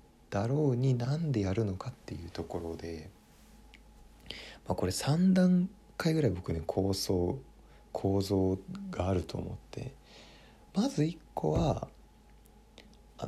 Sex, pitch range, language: male, 90-135 Hz, Japanese